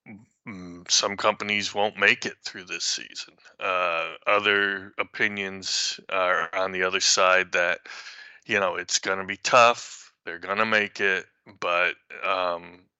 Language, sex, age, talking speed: English, male, 20-39, 145 wpm